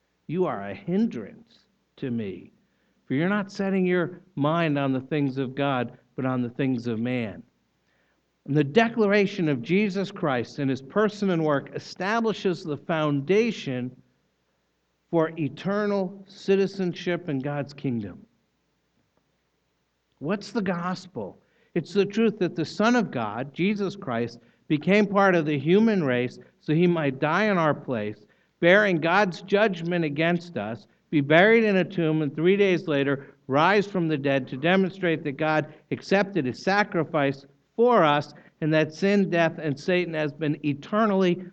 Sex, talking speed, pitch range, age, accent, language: male, 150 wpm, 140-195 Hz, 60-79, American, English